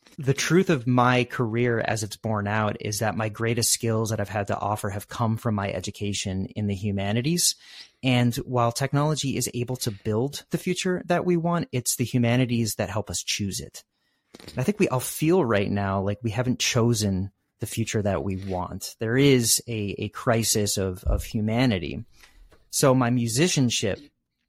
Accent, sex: American, male